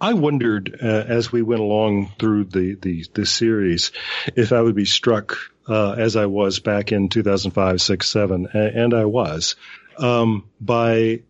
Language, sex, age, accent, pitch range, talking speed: English, male, 40-59, American, 105-125 Hz, 165 wpm